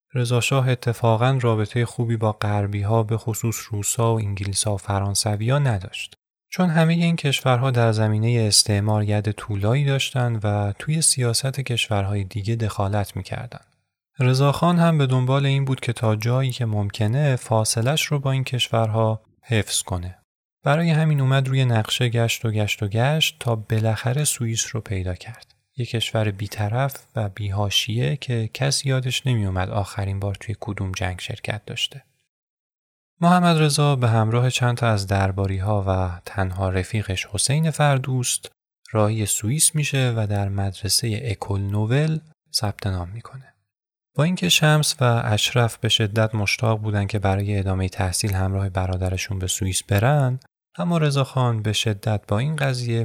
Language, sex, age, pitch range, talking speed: Persian, male, 30-49, 105-130 Hz, 150 wpm